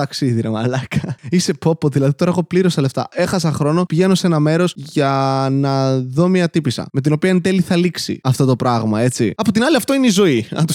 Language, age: Greek, 20-39